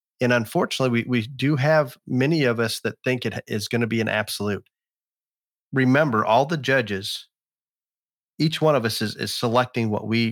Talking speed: 180 wpm